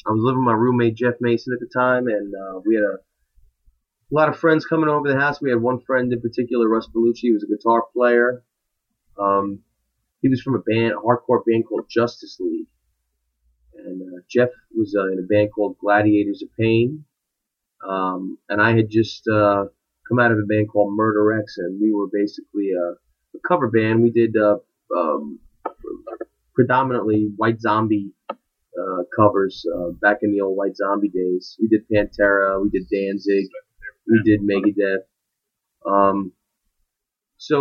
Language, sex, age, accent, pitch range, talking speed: English, male, 30-49, American, 100-130 Hz, 175 wpm